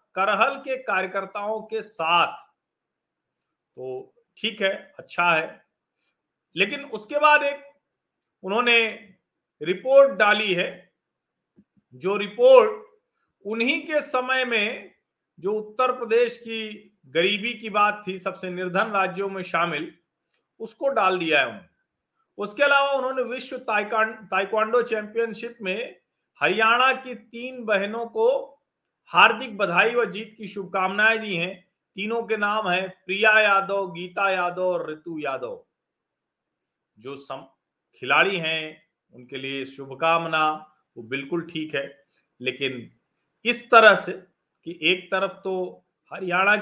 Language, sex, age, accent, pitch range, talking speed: Hindi, male, 40-59, native, 175-235 Hz, 105 wpm